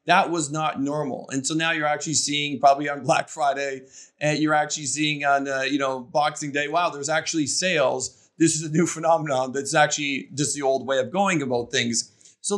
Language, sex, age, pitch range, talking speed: English, male, 30-49, 140-165 Hz, 210 wpm